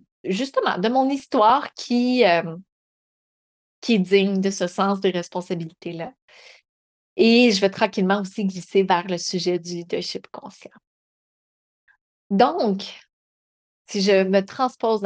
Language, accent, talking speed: French, Canadian, 125 wpm